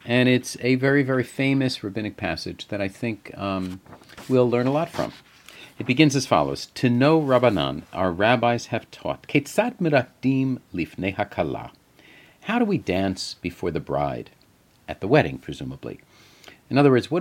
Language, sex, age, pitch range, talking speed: English, male, 50-69, 105-135 Hz, 150 wpm